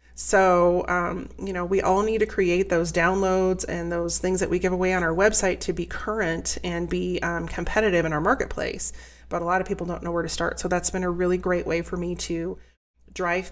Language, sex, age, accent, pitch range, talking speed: English, female, 30-49, American, 170-195 Hz, 230 wpm